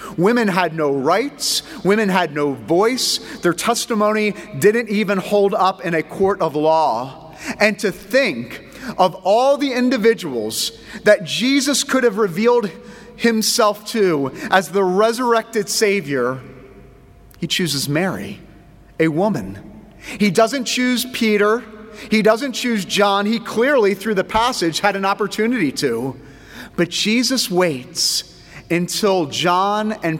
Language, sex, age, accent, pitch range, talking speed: English, male, 30-49, American, 160-220 Hz, 130 wpm